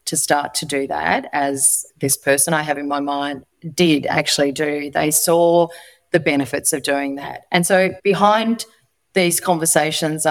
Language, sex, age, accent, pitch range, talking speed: English, female, 30-49, Australian, 145-160 Hz, 165 wpm